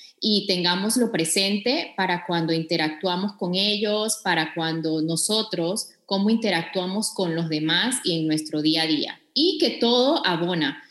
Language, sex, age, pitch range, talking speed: Spanish, female, 20-39, 165-205 Hz, 145 wpm